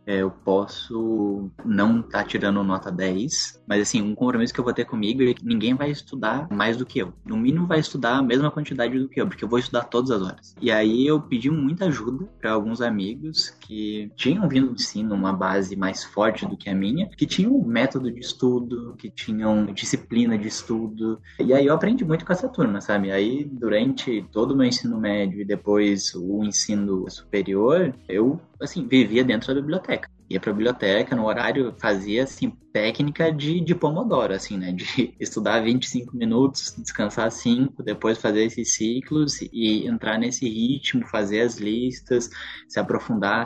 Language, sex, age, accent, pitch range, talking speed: Portuguese, male, 20-39, Brazilian, 100-135 Hz, 185 wpm